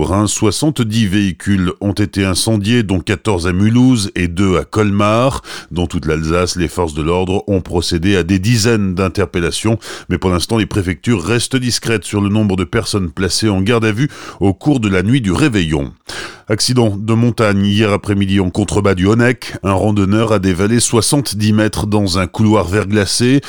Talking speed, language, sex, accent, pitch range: 185 wpm, French, male, French, 90-110 Hz